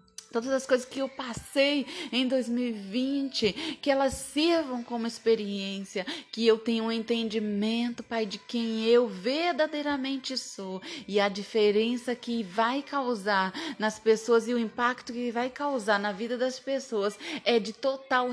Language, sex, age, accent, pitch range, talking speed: Portuguese, female, 20-39, Brazilian, 210-255 Hz, 145 wpm